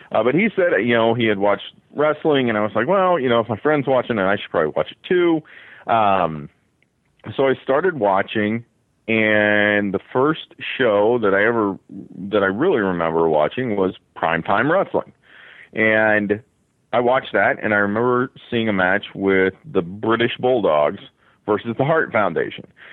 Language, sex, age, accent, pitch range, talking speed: English, male, 40-59, American, 95-130 Hz, 175 wpm